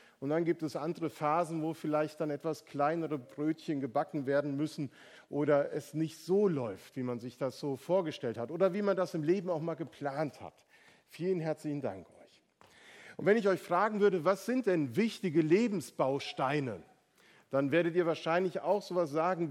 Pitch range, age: 140-185 Hz, 50-69